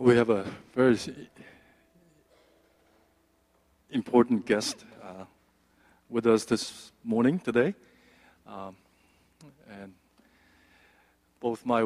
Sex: male